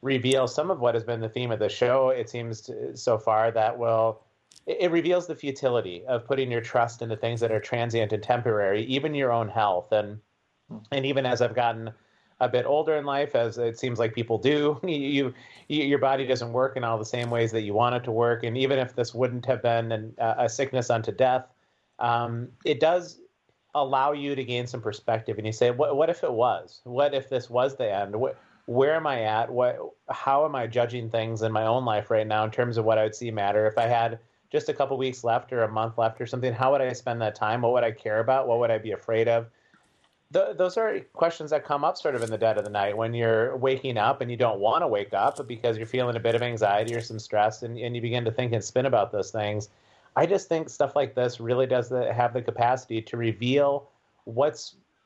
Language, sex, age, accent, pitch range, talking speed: English, male, 30-49, American, 115-135 Hz, 245 wpm